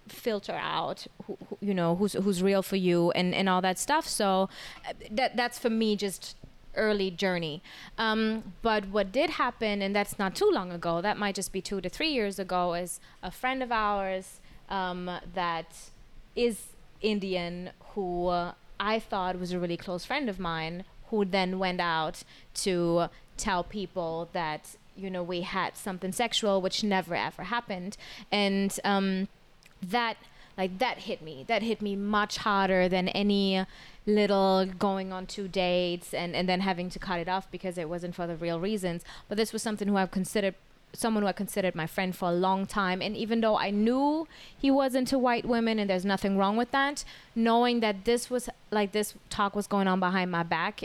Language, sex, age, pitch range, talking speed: English, female, 20-39, 180-215 Hz, 190 wpm